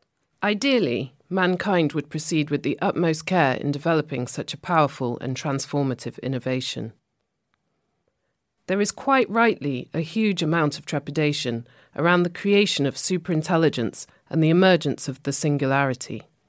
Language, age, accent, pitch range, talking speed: English, 40-59, British, 140-185 Hz, 130 wpm